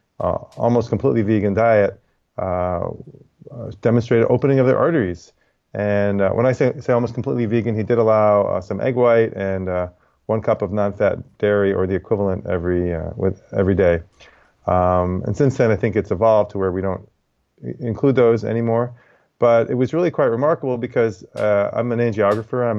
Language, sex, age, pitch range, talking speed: English, male, 30-49, 100-120 Hz, 185 wpm